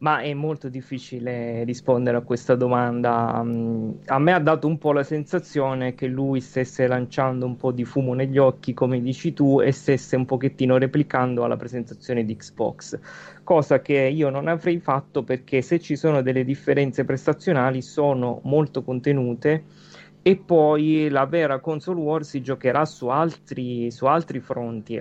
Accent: native